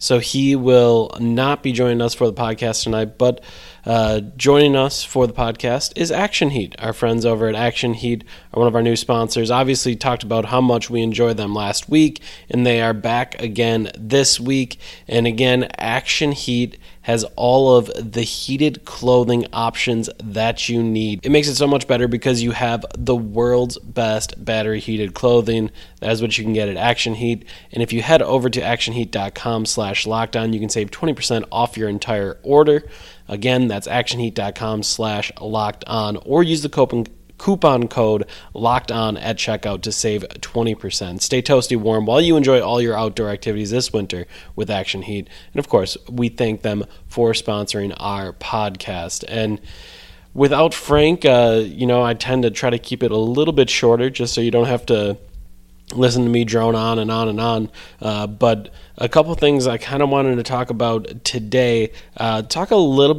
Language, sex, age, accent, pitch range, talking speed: English, male, 20-39, American, 110-125 Hz, 190 wpm